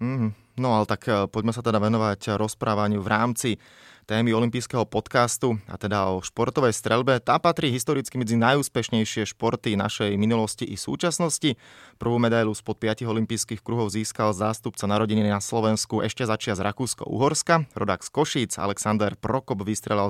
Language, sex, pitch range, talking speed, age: Slovak, male, 100-120 Hz, 145 wpm, 20-39